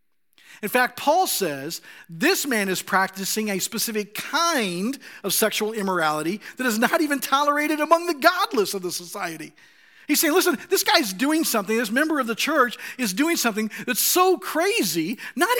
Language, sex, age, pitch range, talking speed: English, male, 50-69, 185-260 Hz, 170 wpm